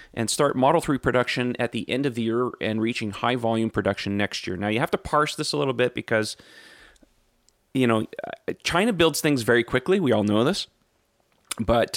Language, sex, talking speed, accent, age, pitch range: English, male, 200 wpm, American, 30-49, 105-130 Hz